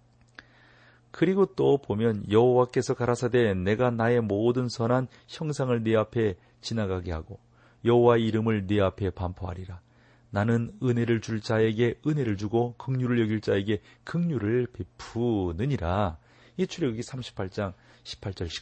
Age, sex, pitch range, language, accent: 40-59, male, 110-145 Hz, Korean, native